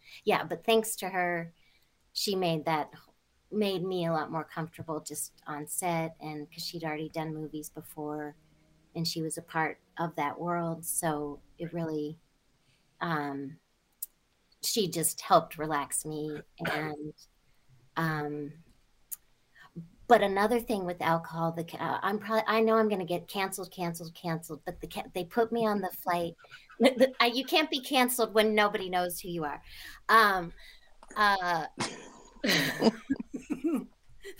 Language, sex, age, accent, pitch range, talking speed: English, female, 40-59, American, 160-215 Hz, 140 wpm